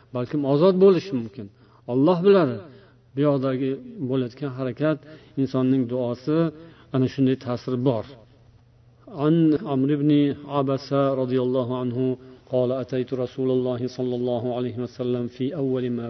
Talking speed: 120 wpm